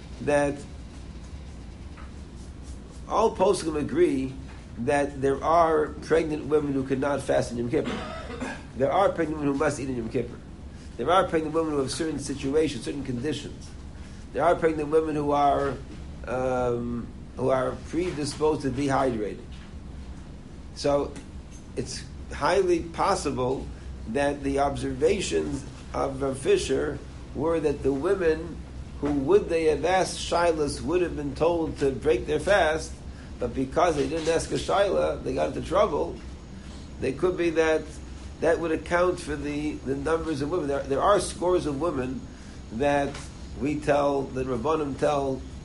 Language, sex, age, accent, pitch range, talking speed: English, male, 60-79, American, 100-155 Hz, 145 wpm